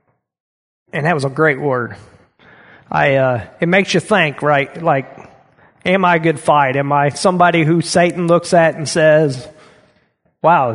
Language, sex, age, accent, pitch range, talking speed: English, male, 30-49, American, 145-175 Hz, 160 wpm